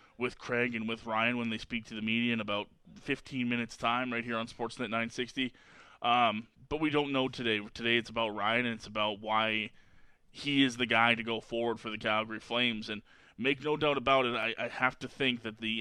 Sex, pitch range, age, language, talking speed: male, 110-125 Hz, 20-39, English, 225 wpm